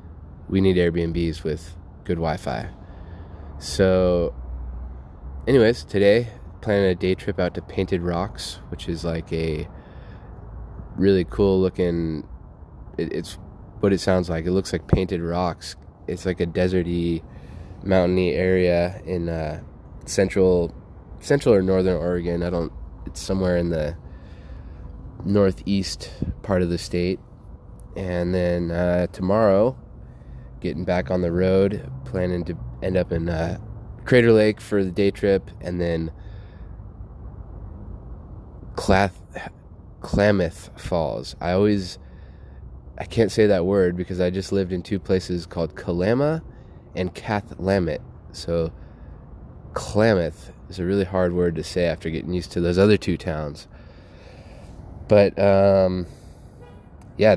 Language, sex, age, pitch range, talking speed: English, male, 20-39, 85-95 Hz, 130 wpm